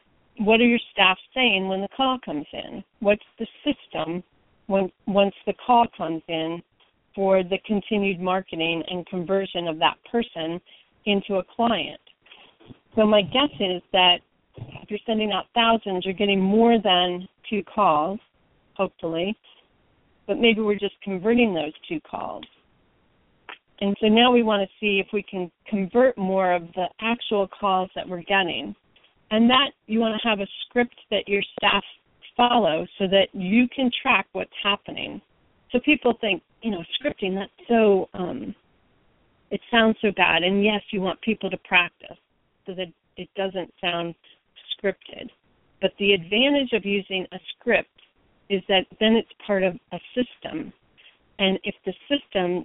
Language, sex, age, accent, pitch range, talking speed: English, female, 40-59, American, 185-225 Hz, 155 wpm